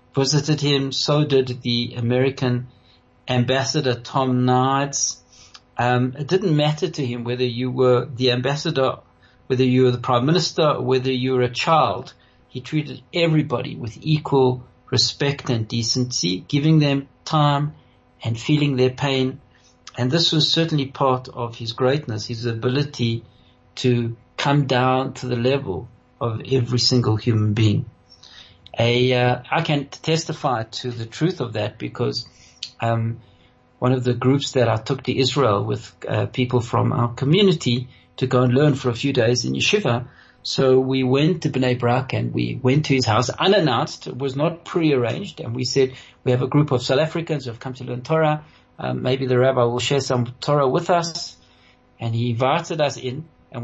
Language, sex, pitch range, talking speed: English, male, 120-140 Hz, 170 wpm